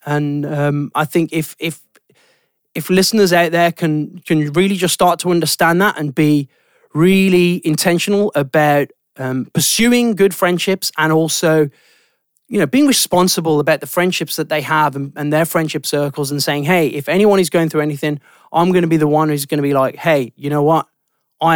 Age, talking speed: 30-49, 190 wpm